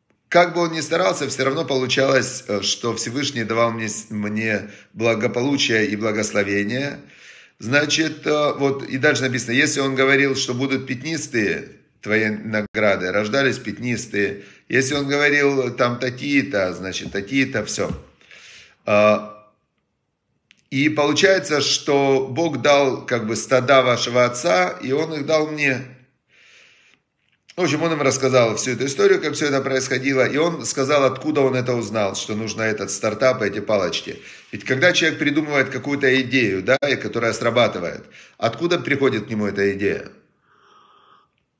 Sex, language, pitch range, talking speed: male, Russian, 115-145 Hz, 135 wpm